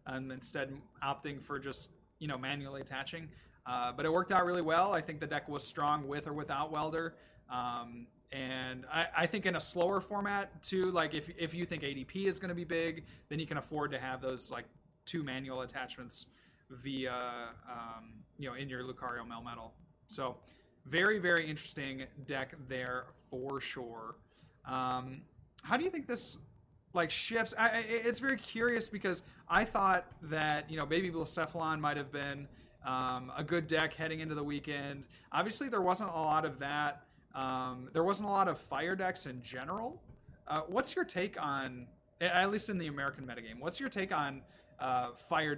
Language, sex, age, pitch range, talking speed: English, male, 30-49, 130-175 Hz, 185 wpm